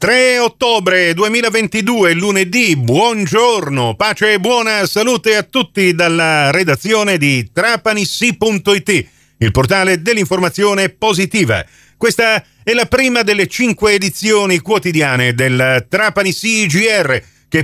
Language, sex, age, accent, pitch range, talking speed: Italian, male, 40-59, native, 145-205 Hz, 105 wpm